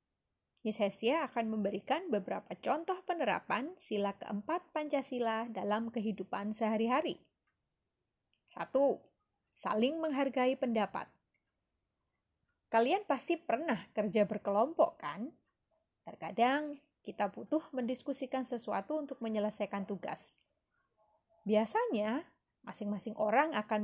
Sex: female